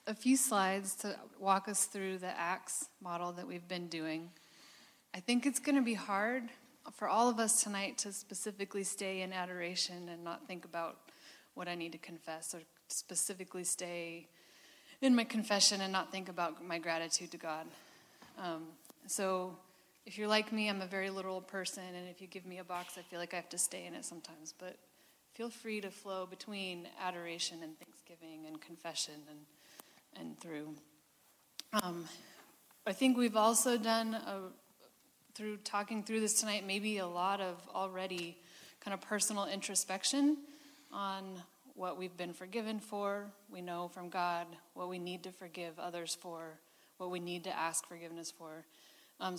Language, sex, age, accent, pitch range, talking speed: English, female, 30-49, American, 175-210 Hz, 170 wpm